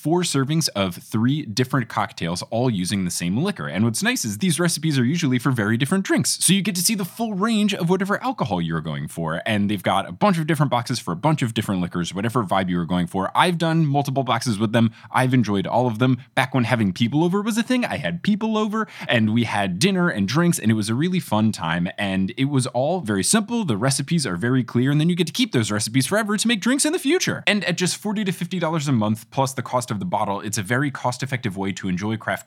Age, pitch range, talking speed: 20-39, 105-175 Hz, 260 wpm